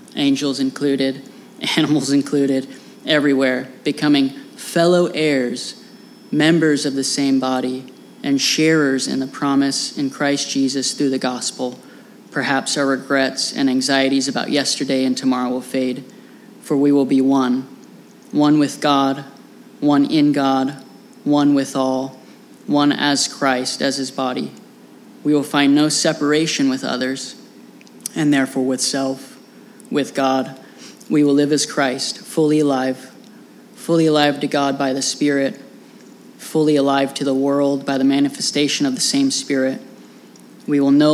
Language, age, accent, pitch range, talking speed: English, 20-39, American, 135-155 Hz, 140 wpm